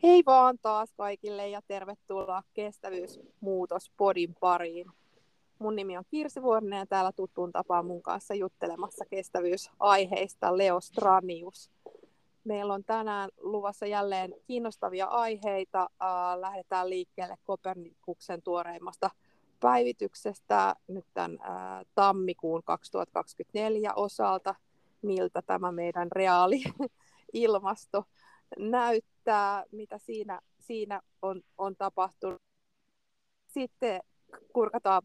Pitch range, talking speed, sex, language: 175-210 Hz, 95 wpm, female, Finnish